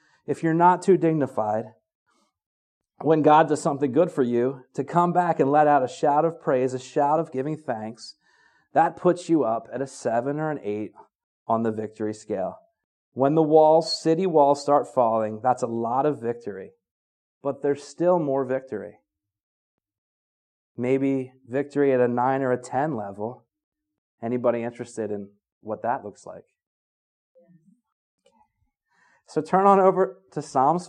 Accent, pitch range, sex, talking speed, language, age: American, 120-165 Hz, male, 155 wpm, English, 30-49